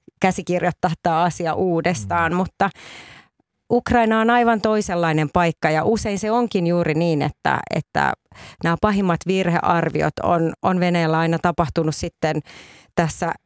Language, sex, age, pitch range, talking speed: Finnish, female, 30-49, 170-195 Hz, 125 wpm